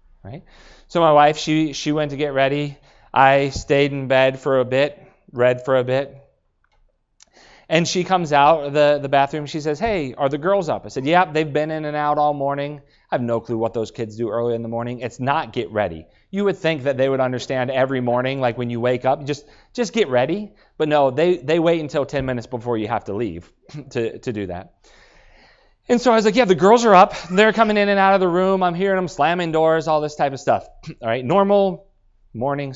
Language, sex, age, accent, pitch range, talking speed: English, male, 30-49, American, 120-160 Hz, 235 wpm